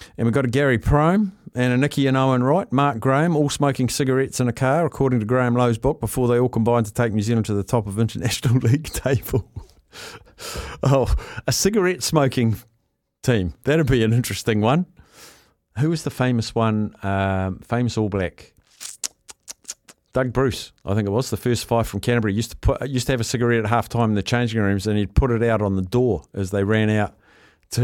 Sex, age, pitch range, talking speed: male, 50-69, 105-125 Hz, 215 wpm